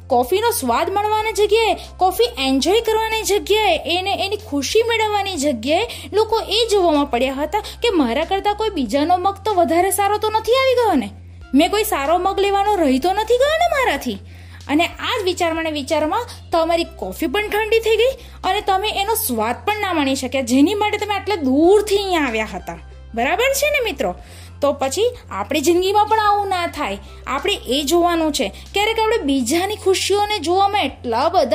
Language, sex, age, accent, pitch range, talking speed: Gujarati, female, 20-39, native, 270-410 Hz, 80 wpm